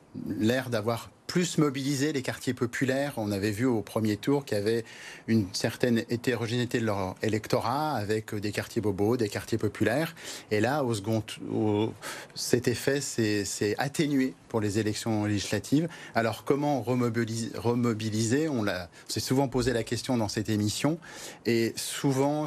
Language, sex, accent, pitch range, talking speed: French, male, French, 105-130 Hz, 160 wpm